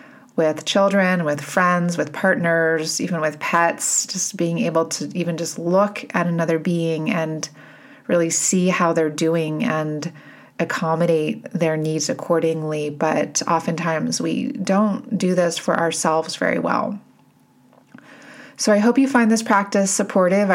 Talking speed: 140 wpm